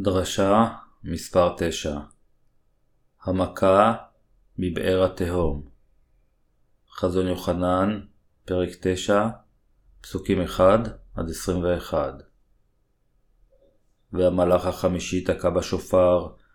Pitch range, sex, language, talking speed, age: 90-100 Hz, male, Hebrew, 70 wpm, 30-49